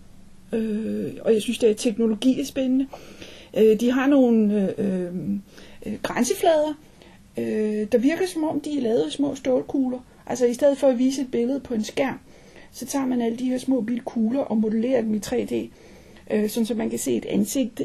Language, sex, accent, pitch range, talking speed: Danish, female, native, 215-265 Hz, 200 wpm